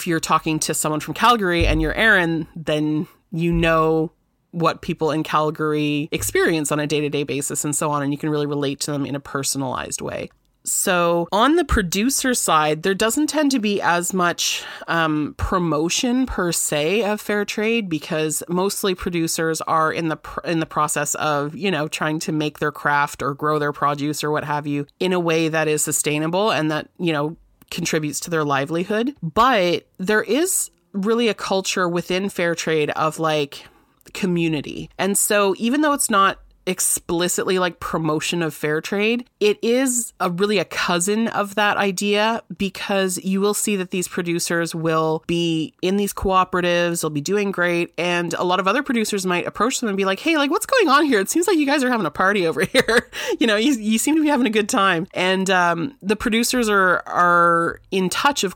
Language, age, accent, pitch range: English, 30-49, American, 155-200 Hz